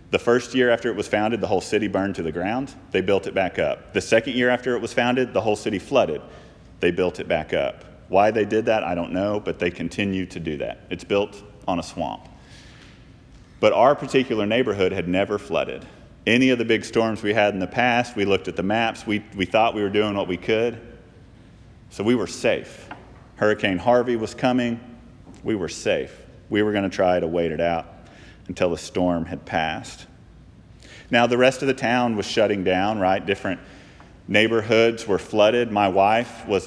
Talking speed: 205 wpm